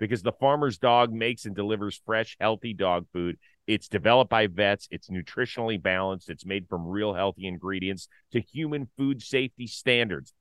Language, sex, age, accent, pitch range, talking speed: English, male, 40-59, American, 100-130 Hz, 165 wpm